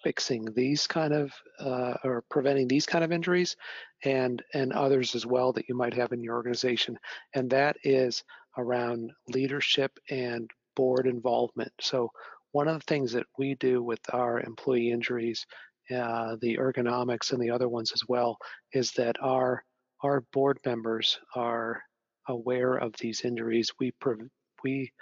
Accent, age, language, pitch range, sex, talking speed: American, 40-59, English, 120-130 Hz, male, 160 wpm